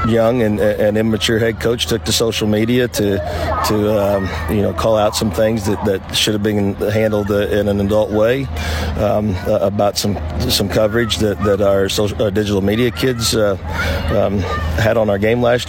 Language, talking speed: English, 185 wpm